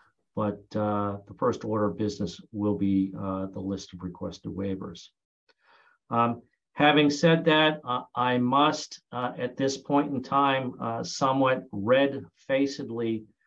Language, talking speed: English, 140 wpm